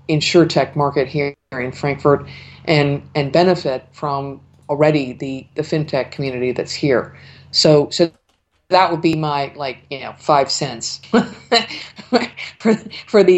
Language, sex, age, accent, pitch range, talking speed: English, female, 50-69, American, 145-175 Hz, 130 wpm